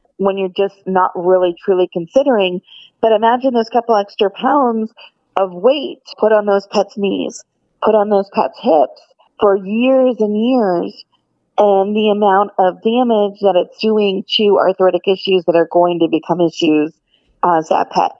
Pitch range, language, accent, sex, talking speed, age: 185-230 Hz, English, American, female, 160 wpm, 30-49